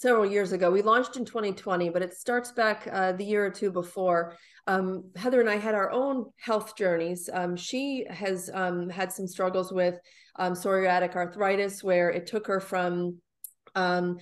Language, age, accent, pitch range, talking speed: English, 30-49, American, 180-220 Hz, 180 wpm